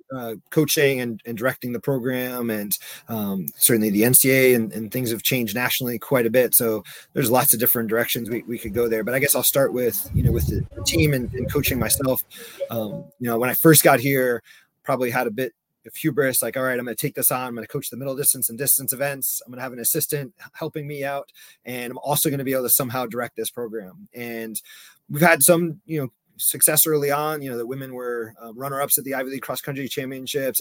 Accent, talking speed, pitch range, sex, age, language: American, 240 wpm, 120-140 Hz, male, 30-49, English